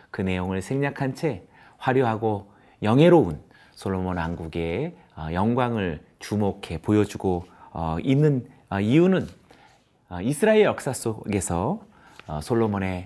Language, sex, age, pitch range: Korean, male, 40-59, 95-150 Hz